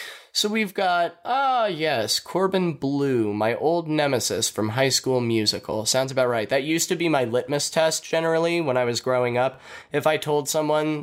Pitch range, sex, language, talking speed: 110-160 Hz, male, English, 185 wpm